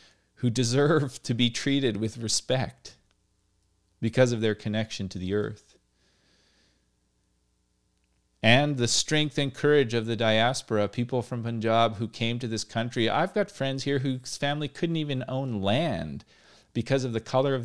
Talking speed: 155 wpm